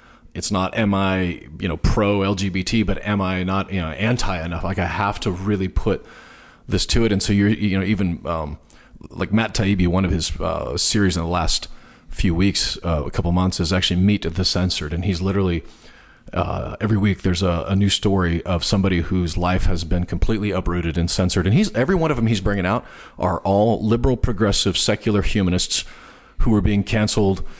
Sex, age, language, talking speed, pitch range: male, 40-59, English, 205 wpm, 90-105 Hz